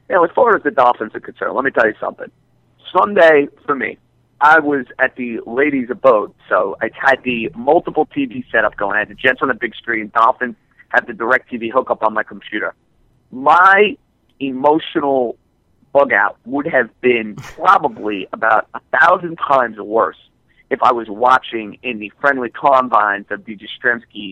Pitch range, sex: 115-130 Hz, male